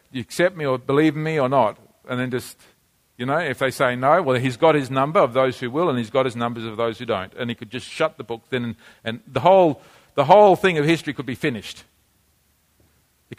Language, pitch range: English, 130-175 Hz